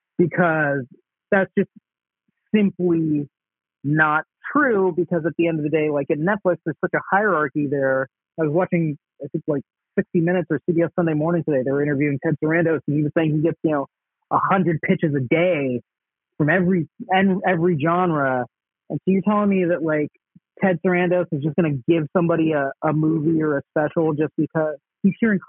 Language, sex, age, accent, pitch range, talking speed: English, male, 30-49, American, 150-180 Hz, 190 wpm